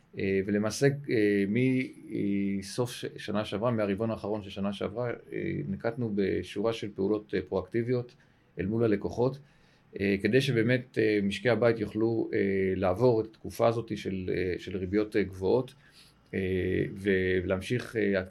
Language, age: Hebrew, 40-59